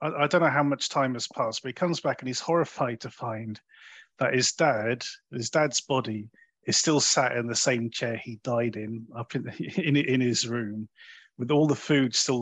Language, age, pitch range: English, 30-49, 120-150 Hz